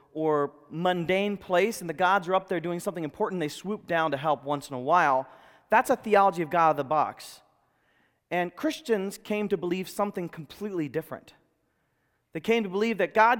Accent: American